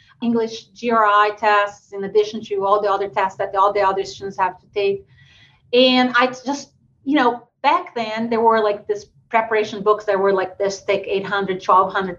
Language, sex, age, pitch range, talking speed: English, female, 30-49, 195-230 Hz, 185 wpm